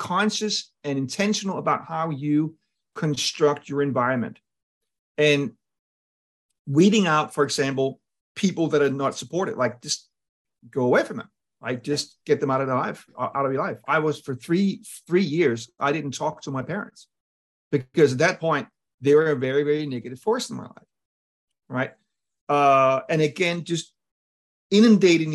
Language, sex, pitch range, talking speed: English, male, 125-155 Hz, 165 wpm